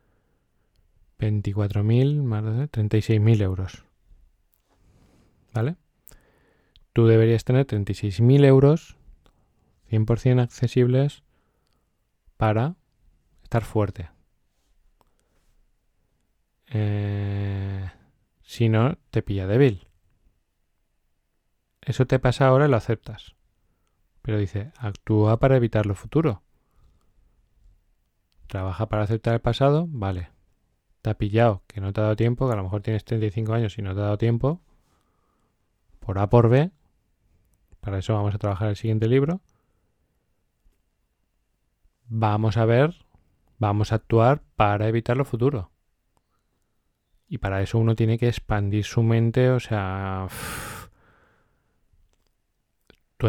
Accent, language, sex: Spanish, Spanish, male